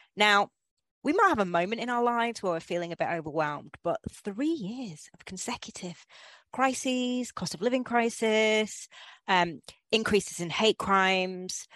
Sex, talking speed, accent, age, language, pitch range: female, 155 wpm, British, 30-49, English, 160-225 Hz